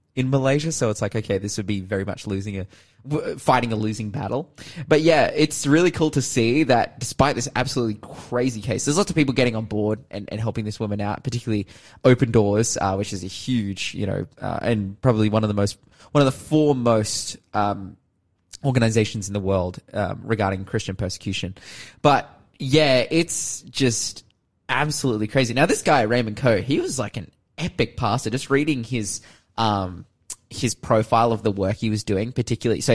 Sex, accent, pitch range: male, Australian, 105-130 Hz